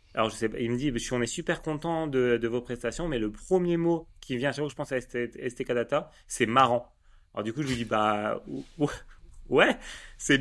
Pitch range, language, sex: 120-150 Hz, English, male